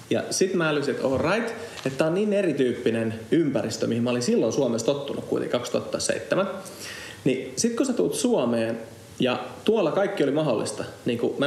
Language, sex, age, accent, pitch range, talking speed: Finnish, male, 30-49, native, 125-170 Hz, 165 wpm